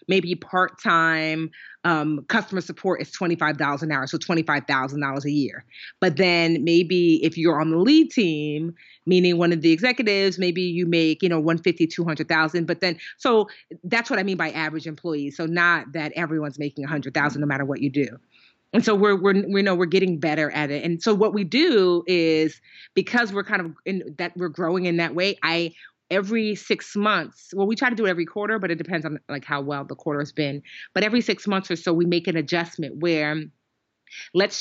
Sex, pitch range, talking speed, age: female, 160-190 Hz, 225 wpm, 30-49